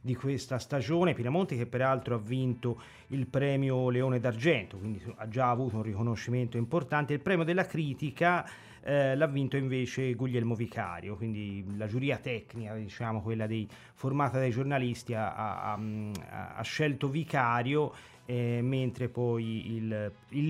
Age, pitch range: 30-49, 115-135 Hz